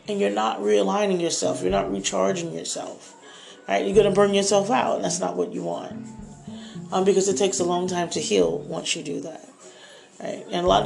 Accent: American